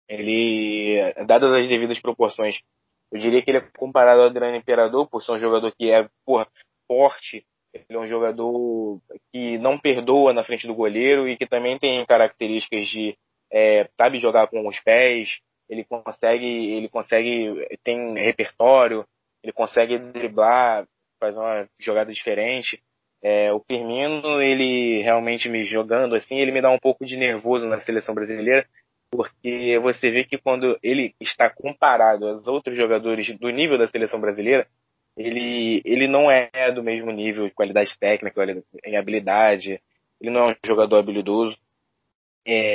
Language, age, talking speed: Portuguese, 20-39, 155 wpm